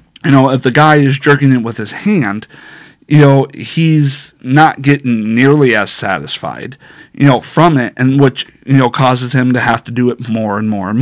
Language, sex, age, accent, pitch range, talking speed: English, male, 40-59, American, 120-145 Hz, 205 wpm